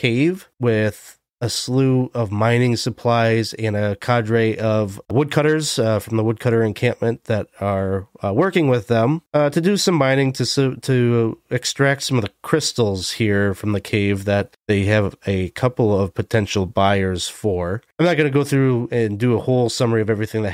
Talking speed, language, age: 180 wpm, English, 30-49